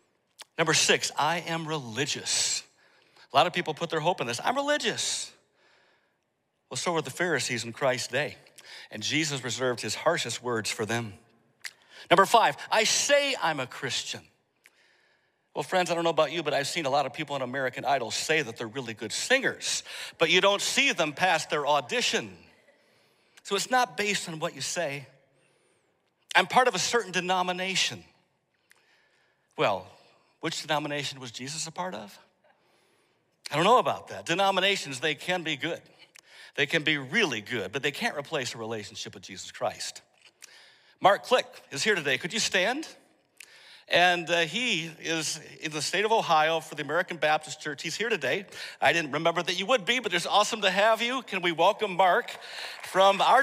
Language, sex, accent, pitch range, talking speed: English, male, American, 140-190 Hz, 180 wpm